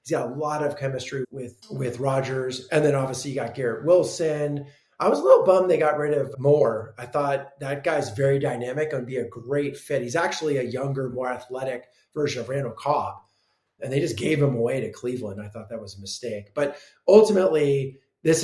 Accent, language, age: American, English, 30-49